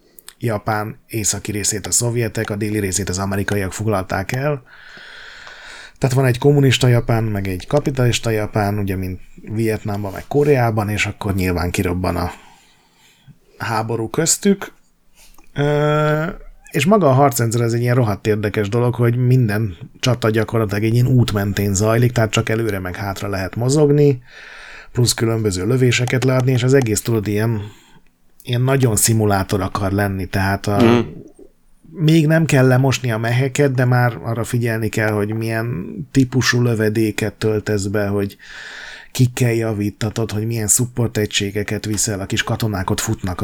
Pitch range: 105-125 Hz